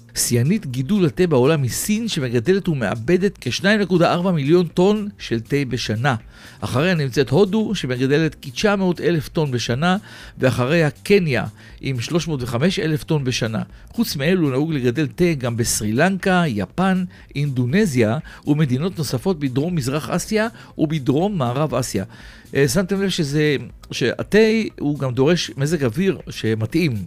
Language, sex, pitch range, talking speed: Hebrew, male, 120-180 Hz, 120 wpm